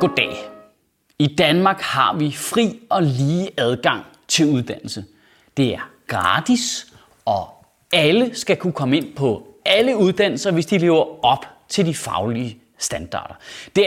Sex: male